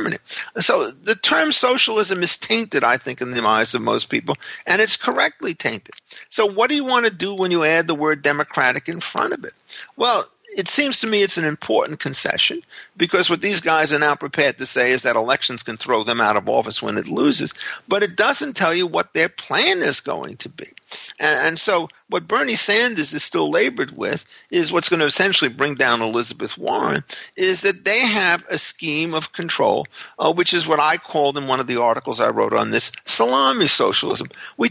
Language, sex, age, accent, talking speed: English, male, 50-69, American, 210 wpm